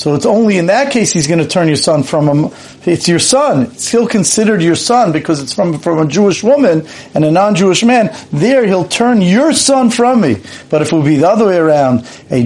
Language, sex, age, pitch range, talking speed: English, male, 40-59, 140-185 Hz, 240 wpm